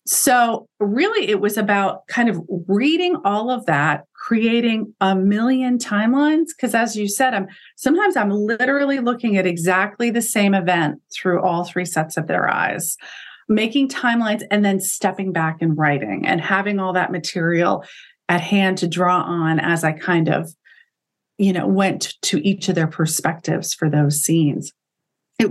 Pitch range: 160-215 Hz